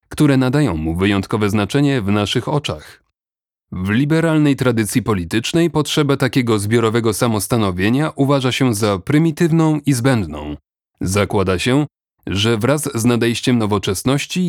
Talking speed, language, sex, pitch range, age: 120 wpm, Polish, male, 105-140 Hz, 30-49